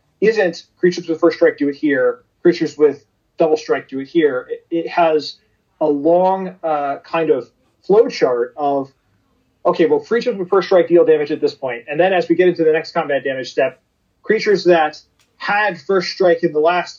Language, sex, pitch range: English, male, 140-185 Hz